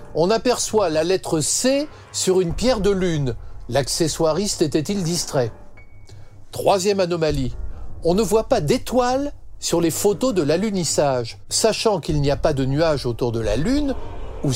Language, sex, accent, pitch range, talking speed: French, male, French, 135-210 Hz, 155 wpm